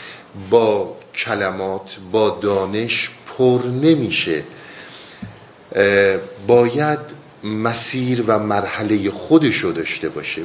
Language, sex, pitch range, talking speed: Persian, male, 105-135 Hz, 75 wpm